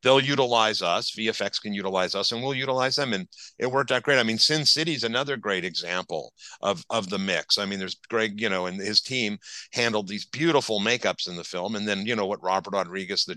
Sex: male